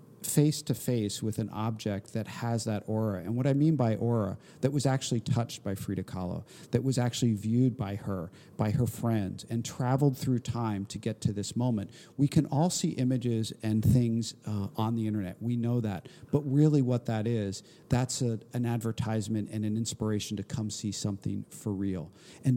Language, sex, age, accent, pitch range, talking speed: English, male, 50-69, American, 105-125 Hz, 190 wpm